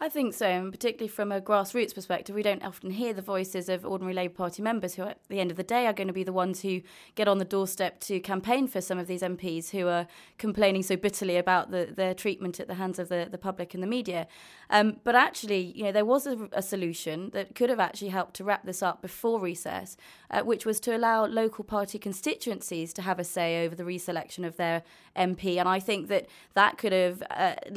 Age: 20-39